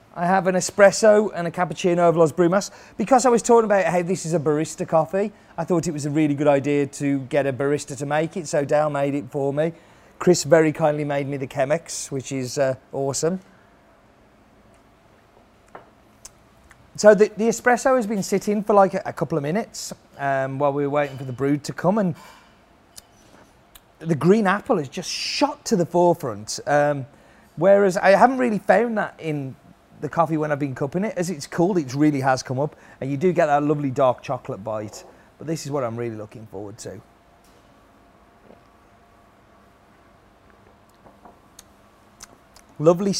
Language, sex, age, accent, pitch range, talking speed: English, male, 30-49, British, 135-180 Hz, 180 wpm